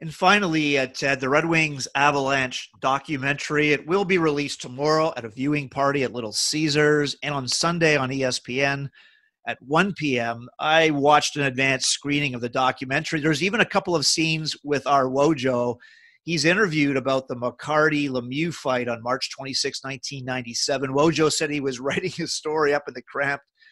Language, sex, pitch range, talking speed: English, male, 135-160 Hz, 170 wpm